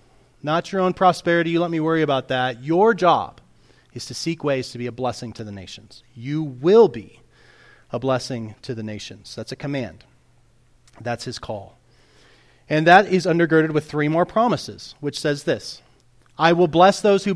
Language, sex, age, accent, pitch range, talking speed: English, male, 30-49, American, 125-175 Hz, 185 wpm